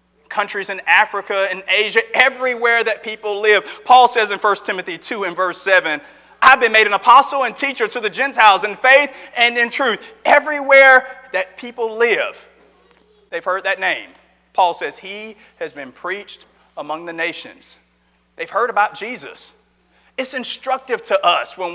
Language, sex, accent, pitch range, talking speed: English, male, American, 200-255 Hz, 165 wpm